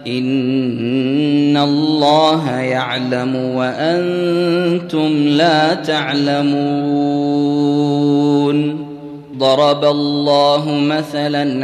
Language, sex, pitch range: Arabic, male, 145-155 Hz